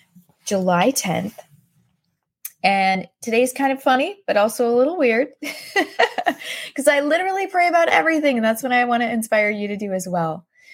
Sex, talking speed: female, 170 wpm